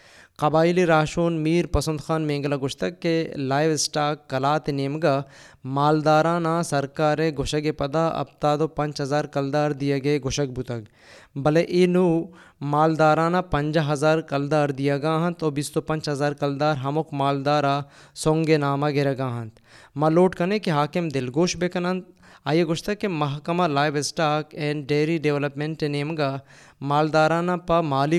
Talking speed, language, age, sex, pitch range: 145 wpm, Persian, 20-39, male, 140-160 Hz